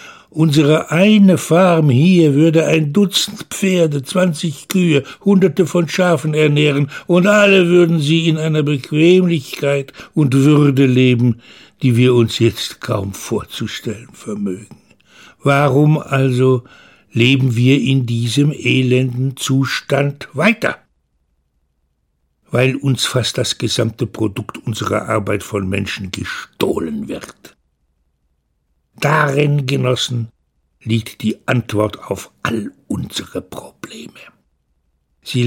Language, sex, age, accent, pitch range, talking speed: German, male, 60-79, German, 110-155 Hz, 105 wpm